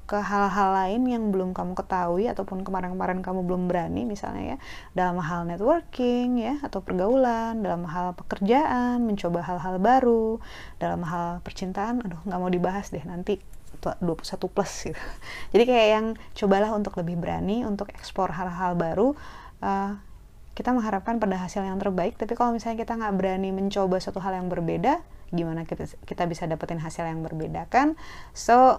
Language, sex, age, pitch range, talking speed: Indonesian, female, 20-39, 180-235 Hz, 155 wpm